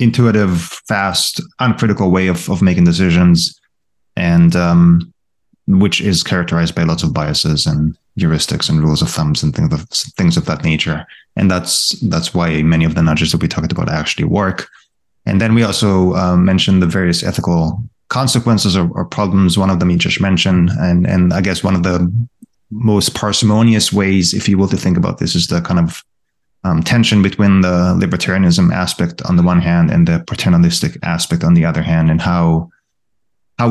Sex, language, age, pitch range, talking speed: male, English, 20-39, 90-125 Hz, 185 wpm